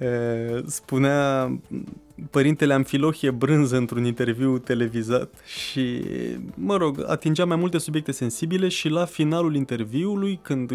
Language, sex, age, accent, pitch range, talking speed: Romanian, male, 20-39, native, 125-165 Hz, 110 wpm